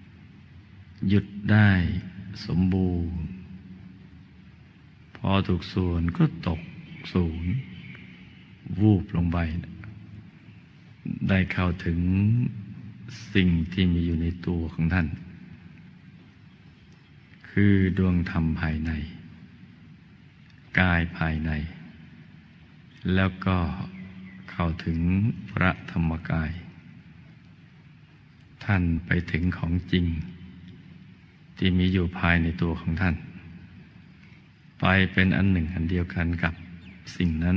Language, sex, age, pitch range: Thai, male, 60-79, 85-95 Hz